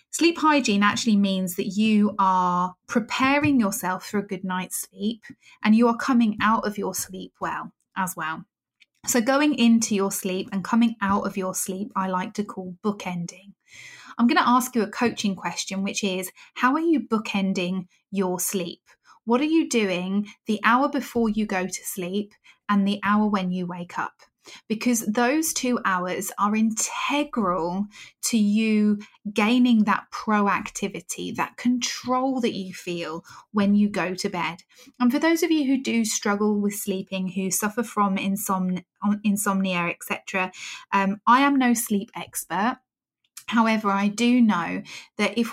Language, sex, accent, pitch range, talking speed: English, female, British, 190-235 Hz, 160 wpm